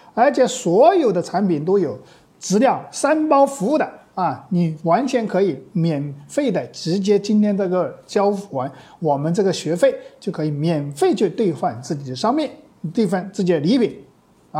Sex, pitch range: male, 165-235 Hz